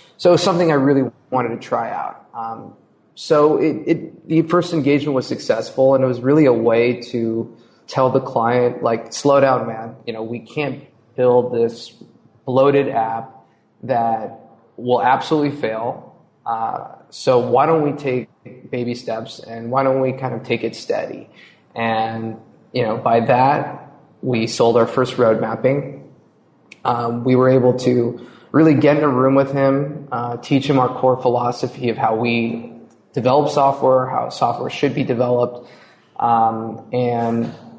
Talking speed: 155 wpm